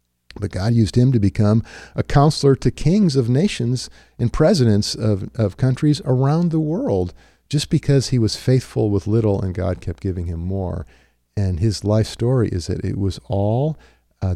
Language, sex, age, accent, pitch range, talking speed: English, male, 50-69, American, 95-130 Hz, 180 wpm